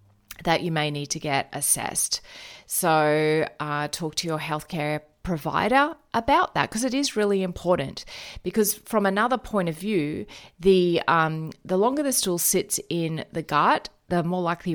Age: 30-49